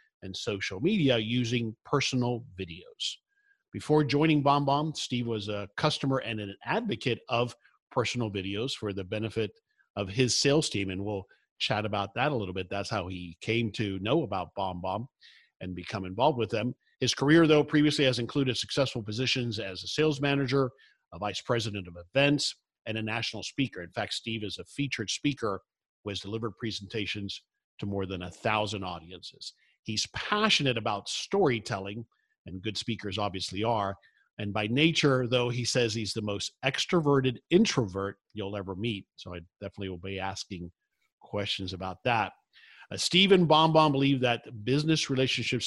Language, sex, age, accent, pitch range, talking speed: English, male, 50-69, American, 100-130 Hz, 165 wpm